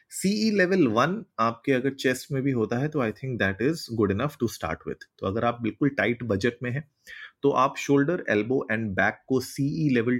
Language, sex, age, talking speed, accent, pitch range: Hindi, male, 30-49, 210 wpm, native, 100-130 Hz